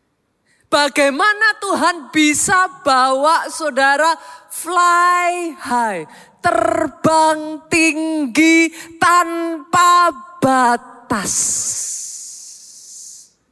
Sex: female